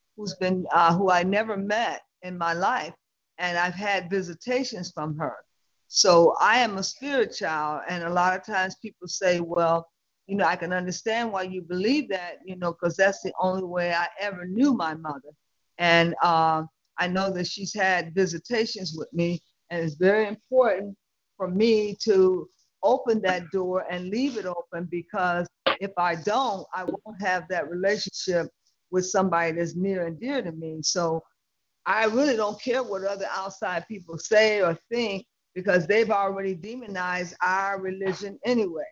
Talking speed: 170 wpm